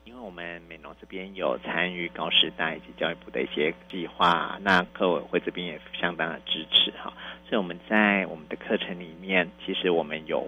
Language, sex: Chinese, male